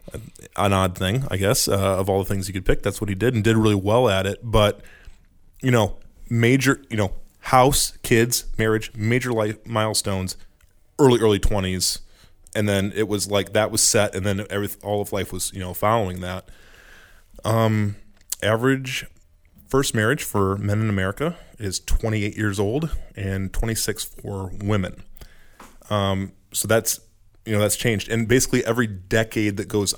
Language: English